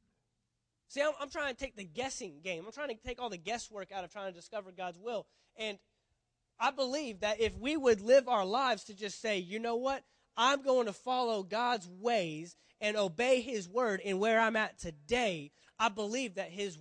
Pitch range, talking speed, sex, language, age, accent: 180-245 Hz, 205 wpm, male, English, 20-39, American